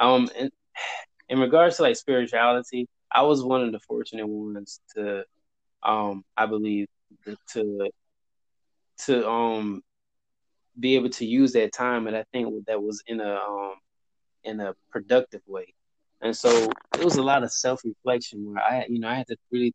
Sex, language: male, English